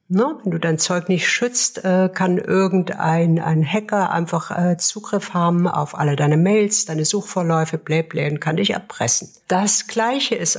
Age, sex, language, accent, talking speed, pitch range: 60-79, female, German, German, 155 wpm, 160-195 Hz